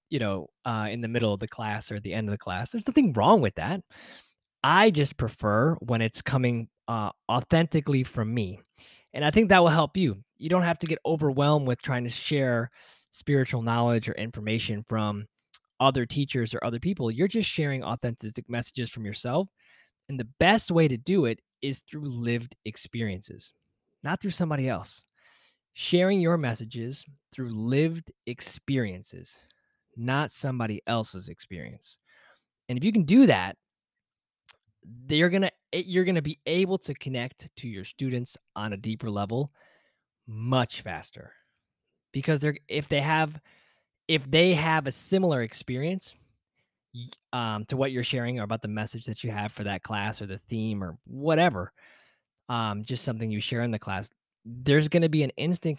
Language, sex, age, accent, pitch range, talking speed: English, male, 20-39, American, 115-155 Hz, 170 wpm